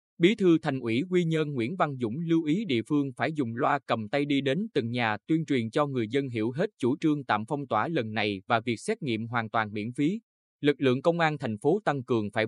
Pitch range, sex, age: 110-155 Hz, male, 20-39